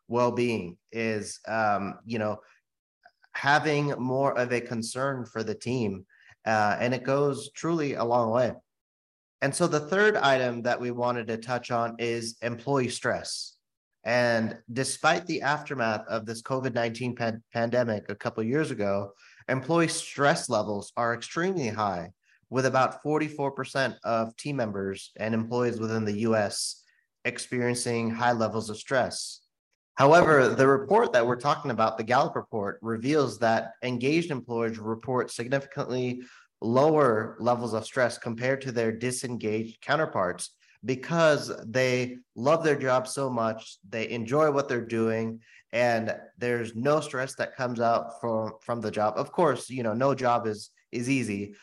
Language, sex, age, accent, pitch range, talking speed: English, male, 30-49, American, 110-130 Hz, 145 wpm